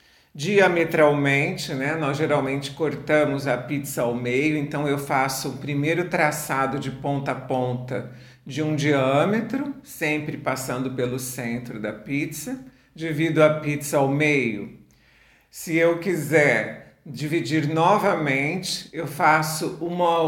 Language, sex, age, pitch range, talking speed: Portuguese, male, 50-69, 140-175 Hz, 120 wpm